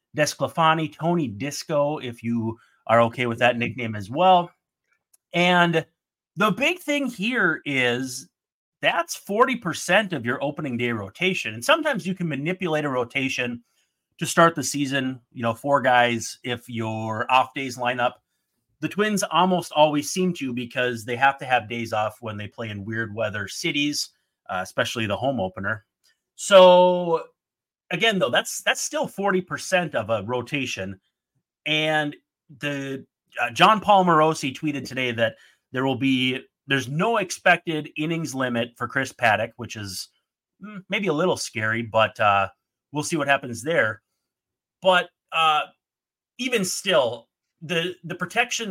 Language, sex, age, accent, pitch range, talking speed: English, male, 30-49, American, 120-175 Hz, 150 wpm